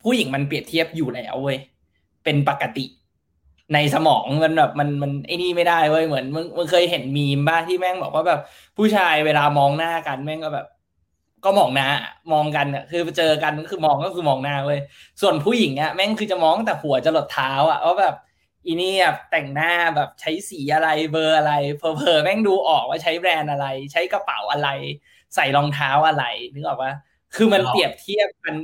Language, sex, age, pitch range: Thai, male, 20-39, 140-180 Hz